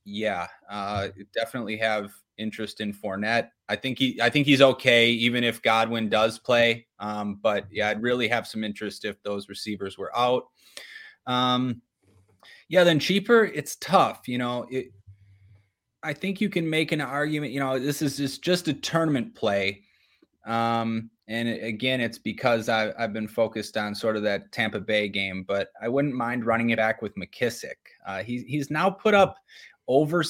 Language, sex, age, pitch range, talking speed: English, male, 20-39, 110-145 Hz, 175 wpm